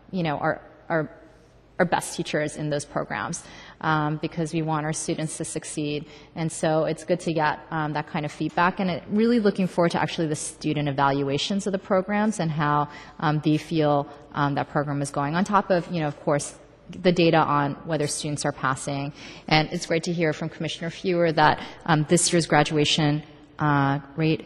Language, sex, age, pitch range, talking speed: English, female, 30-49, 150-175 Hz, 195 wpm